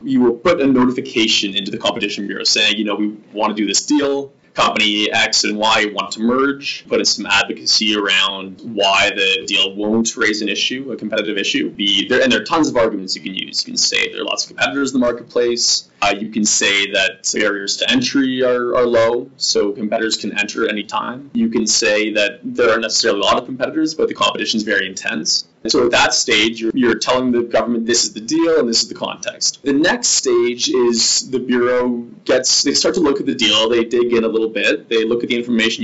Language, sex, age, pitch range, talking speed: English, male, 20-39, 110-125 Hz, 230 wpm